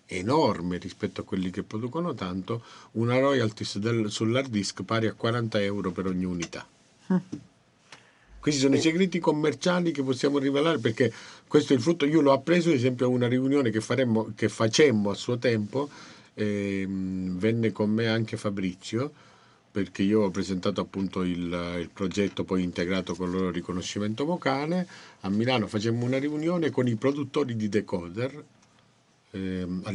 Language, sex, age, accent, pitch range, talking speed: Italian, male, 50-69, native, 95-125 Hz, 155 wpm